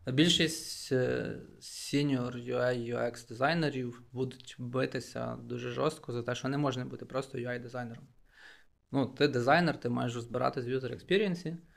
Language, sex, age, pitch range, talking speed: Ukrainian, male, 20-39, 120-135 Hz, 125 wpm